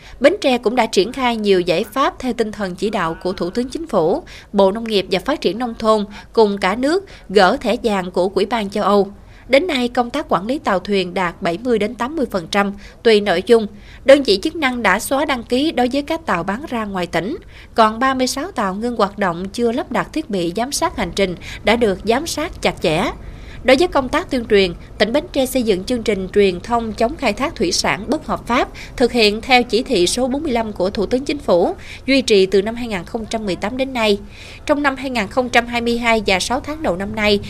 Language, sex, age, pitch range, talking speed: Vietnamese, female, 20-39, 195-255 Hz, 220 wpm